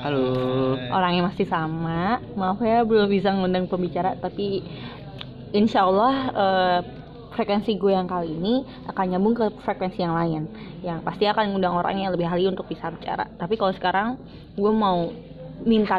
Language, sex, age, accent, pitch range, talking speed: Indonesian, female, 20-39, native, 175-205 Hz, 160 wpm